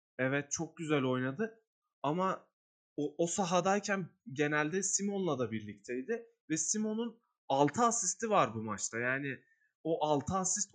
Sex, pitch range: male, 135-200 Hz